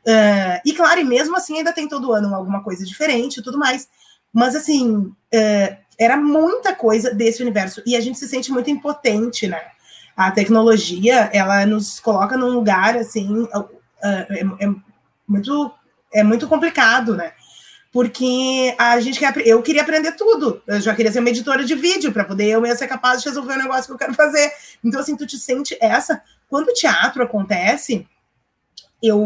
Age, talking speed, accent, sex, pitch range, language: 20-39, 170 wpm, Brazilian, female, 225-310 Hz, Portuguese